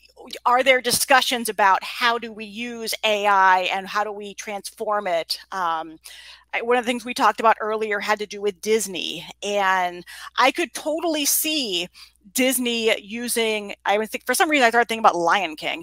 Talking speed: 180 wpm